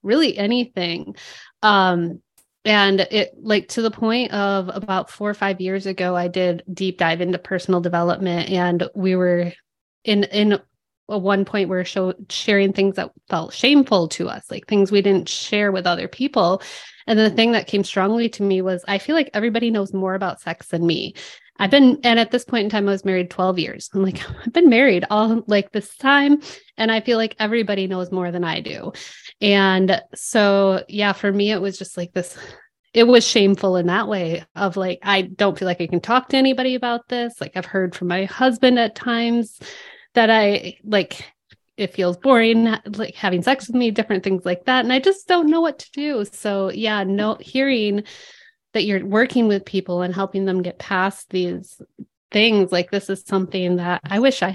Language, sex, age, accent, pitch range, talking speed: English, female, 20-39, American, 185-230 Hz, 200 wpm